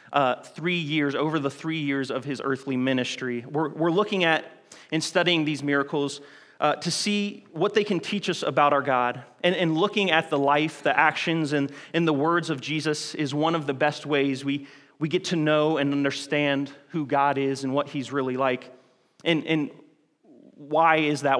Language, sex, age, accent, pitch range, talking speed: English, male, 30-49, American, 140-160 Hz, 195 wpm